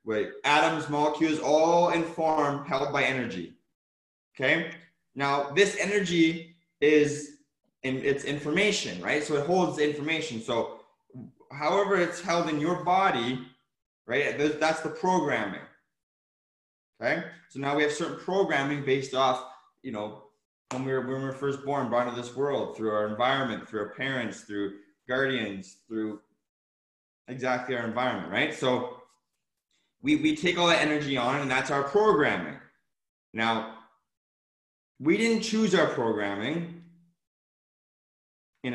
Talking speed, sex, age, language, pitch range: 135 wpm, male, 20-39, English, 125-160 Hz